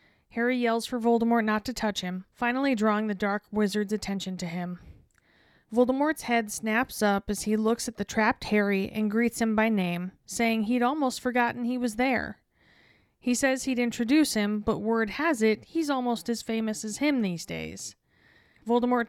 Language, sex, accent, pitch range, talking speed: English, female, American, 205-240 Hz, 180 wpm